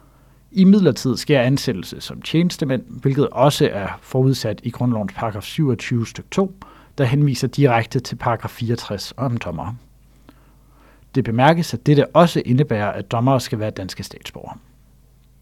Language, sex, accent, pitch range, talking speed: Danish, male, native, 115-145 Hz, 140 wpm